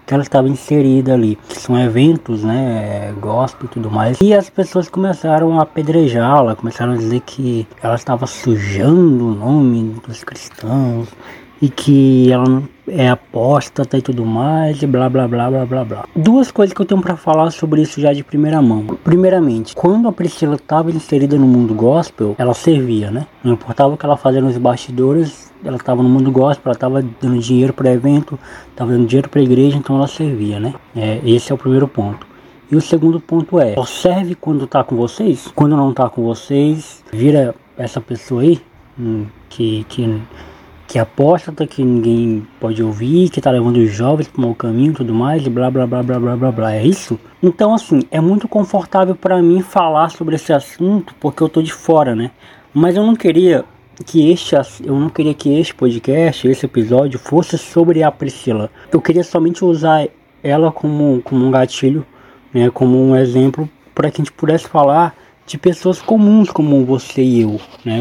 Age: 20-39